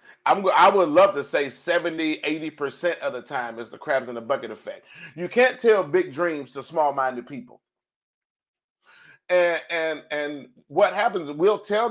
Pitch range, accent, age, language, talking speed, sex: 135-215 Hz, American, 30-49, English, 170 wpm, male